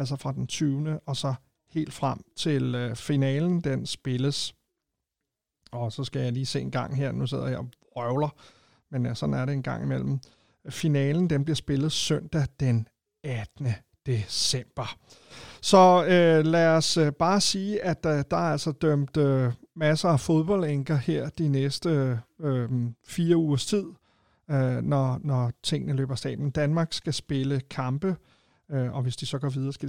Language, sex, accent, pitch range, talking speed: Danish, male, native, 135-165 Hz, 165 wpm